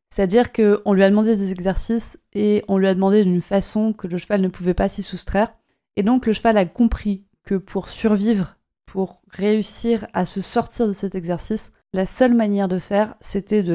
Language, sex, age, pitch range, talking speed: French, female, 30-49, 185-225 Hz, 200 wpm